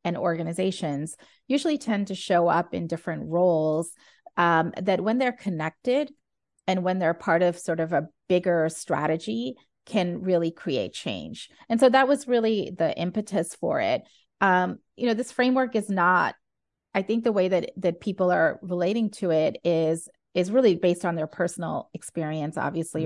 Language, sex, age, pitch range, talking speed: English, female, 30-49, 165-215 Hz, 170 wpm